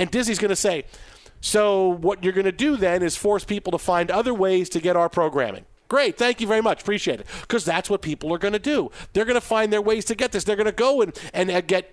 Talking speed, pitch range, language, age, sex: 275 wpm, 160-205 Hz, English, 40-59, male